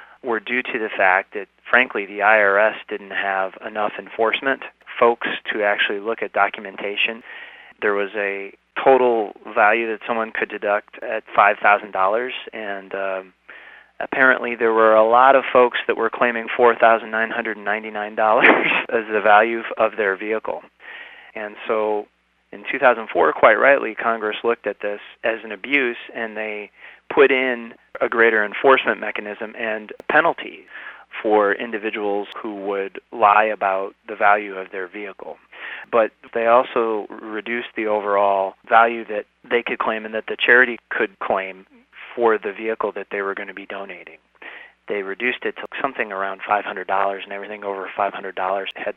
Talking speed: 160 wpm